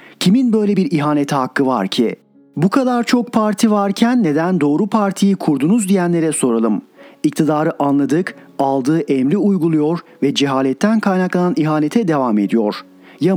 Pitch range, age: 140-190 Hz, 40-59